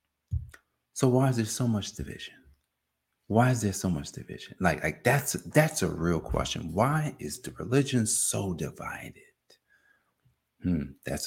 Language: English